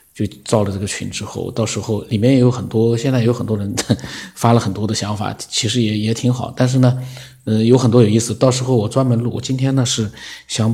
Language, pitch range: Chinese, 105-125 Hz